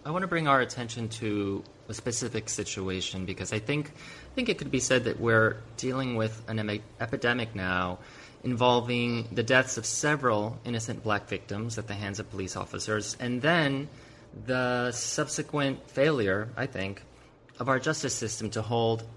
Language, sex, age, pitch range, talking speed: English, male, 30-49, 110-135 Hz, 170 wpm